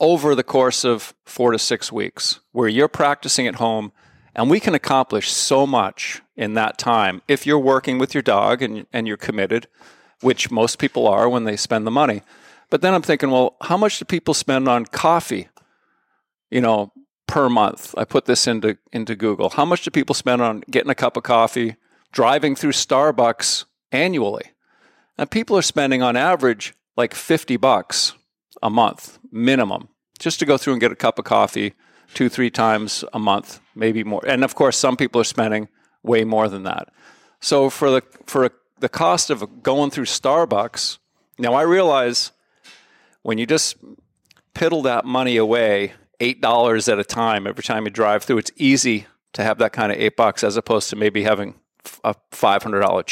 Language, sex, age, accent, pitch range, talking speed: English, male, 50-69, American, 115-140 Hz, 185 wpm